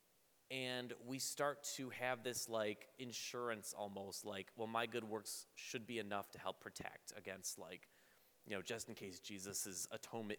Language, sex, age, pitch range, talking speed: English, male, 30-49, 115-155 Hz, 170 wpm